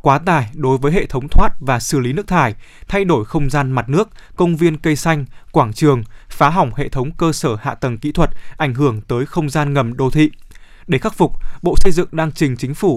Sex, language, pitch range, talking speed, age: male, Vietnamese, 135-165 Hz, 240 wpm, 20-39